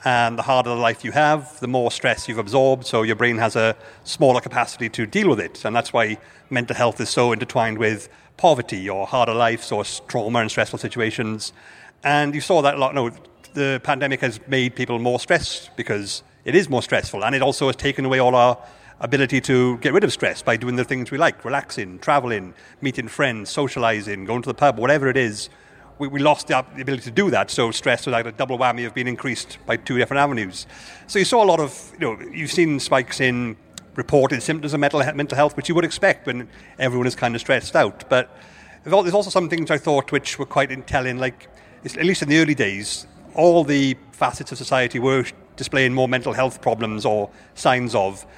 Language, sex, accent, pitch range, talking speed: English, male, British, 120-140 Hz, 215 wpm